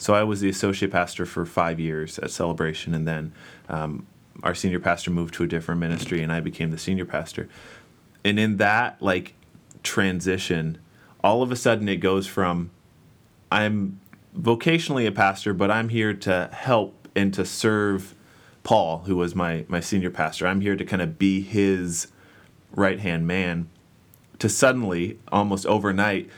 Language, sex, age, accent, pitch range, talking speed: English, male, 30-49, American, 85-100 Hz, 165 wpm